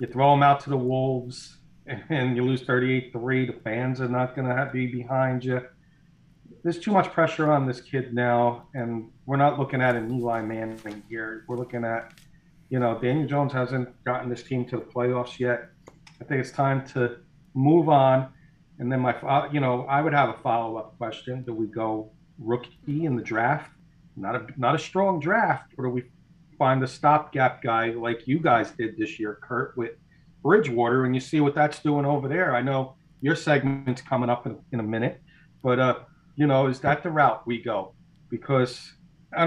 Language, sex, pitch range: English, male, 125-155 Hz